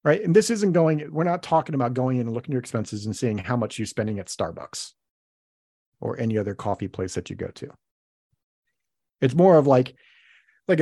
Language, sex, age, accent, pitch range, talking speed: English, male, 40-59, American, 110-145 Hz, 210 wpm